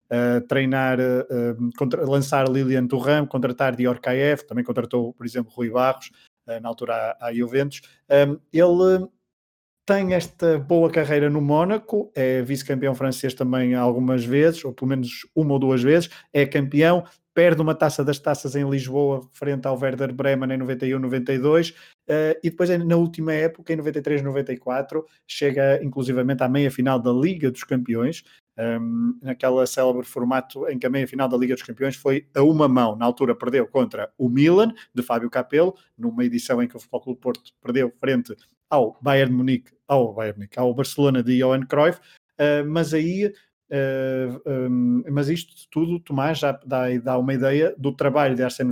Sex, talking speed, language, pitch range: male, 170 wpm, Portuguese, 125-150 Hz